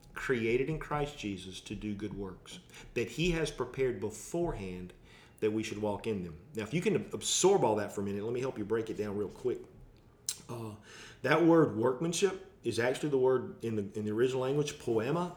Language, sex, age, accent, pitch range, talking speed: English, male, 40-59, American, 110-160 Hz, 205 wpm